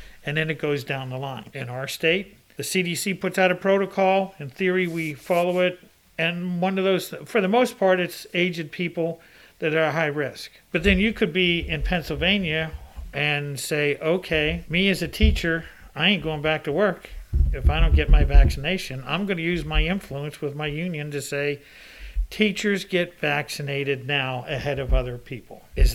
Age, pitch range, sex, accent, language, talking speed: 50-69, 145-180 Hz, male, American, English, 190 wpm